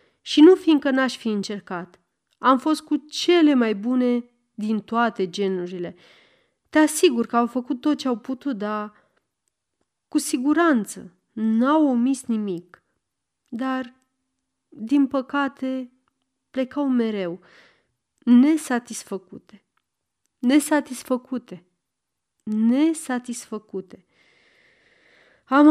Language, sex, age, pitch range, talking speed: Romanian, female, 30-49, 210-280 Hz, 90 wpm